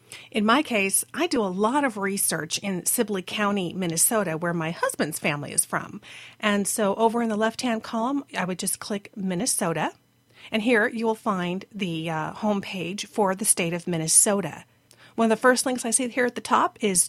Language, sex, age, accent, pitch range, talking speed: English, female, 40-59, American, 175-240 Hz, 205 wpm